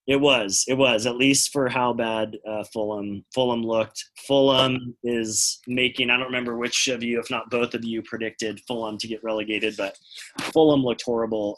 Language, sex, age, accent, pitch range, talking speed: English, male, 30-49, American, 105-120 Hz, 185 wpm